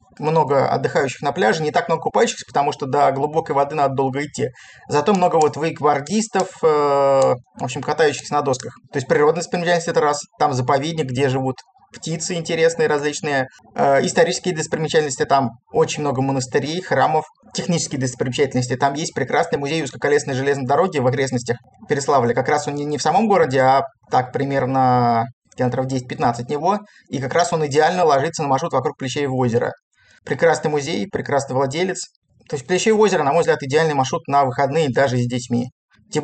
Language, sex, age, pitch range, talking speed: Russian, male, 20-39, 130-170 Hz, 175 wpm